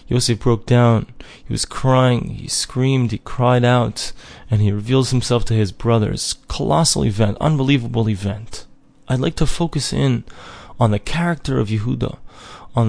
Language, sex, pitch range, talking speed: English, male, 115-140 Hz, 155 wpm